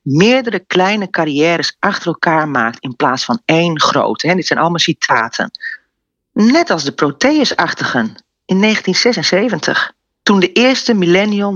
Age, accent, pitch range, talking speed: 40-59, Dutch, 155-200 Hz, 135 wpm